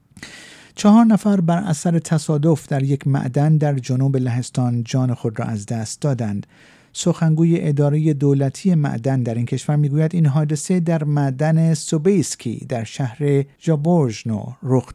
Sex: male